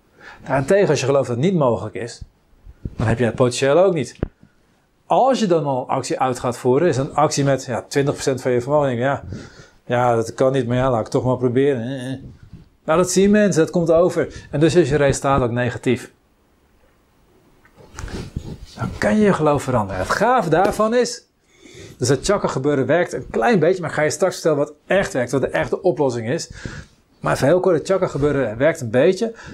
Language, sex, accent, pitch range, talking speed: Dutch, male, Dutch, 125-190 Hz, 205 wpm